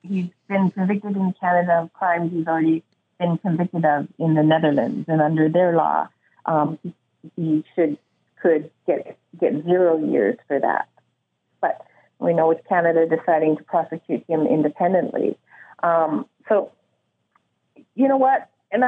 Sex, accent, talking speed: female, American, 145 wpm